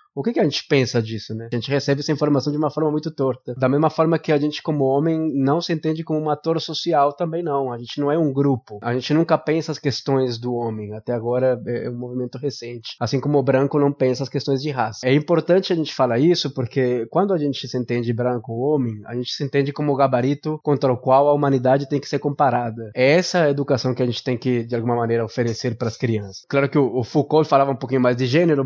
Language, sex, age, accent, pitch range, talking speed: Portuguese, male, 20-39, Brazilian, 125-155 Hz, 255 wpm